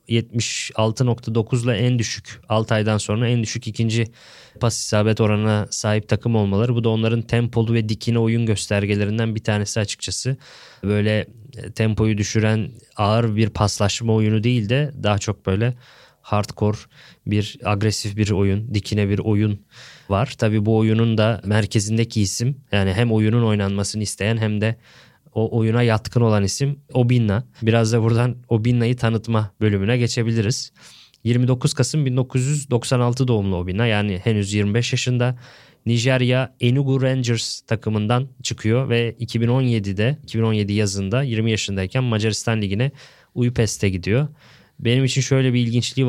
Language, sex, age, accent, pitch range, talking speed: Turkish, male, 20-39, native, 105-125 Hz, 135 wpm